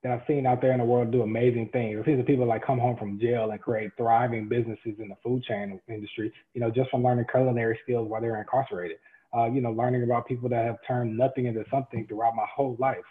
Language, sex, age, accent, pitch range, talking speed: English, male, 20-39, American, 120-150 Hz, 245 wpm